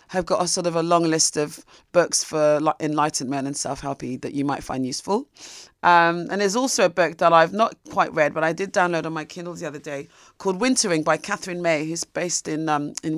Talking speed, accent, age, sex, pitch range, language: 235 wpm, British, 30-49, female, 145-175 Hz, English